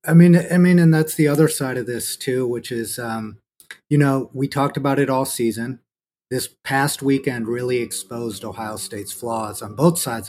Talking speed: 200 wpm